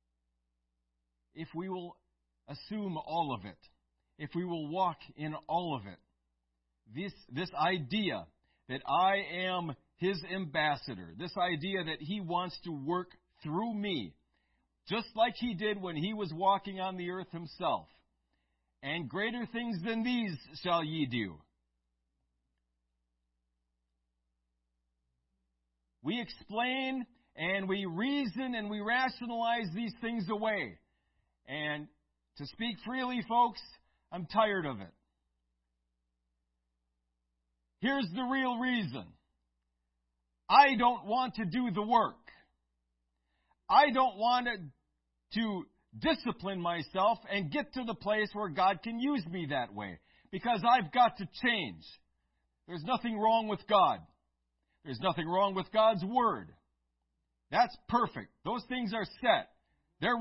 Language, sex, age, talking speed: English, male, 50-69, 125 wpm